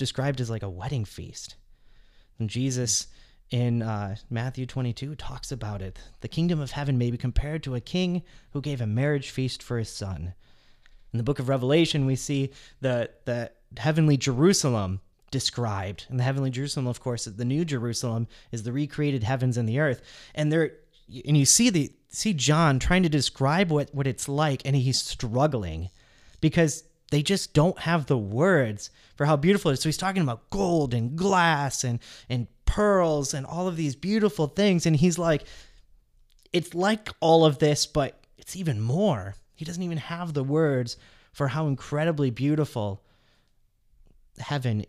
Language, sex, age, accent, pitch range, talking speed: English, male, 30-49, American, 115-155 Hz, 175 wpm